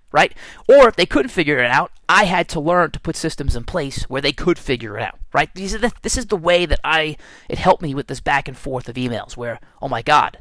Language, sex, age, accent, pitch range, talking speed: English, male, 30-49, American, 130-190 Hz, 270 wpm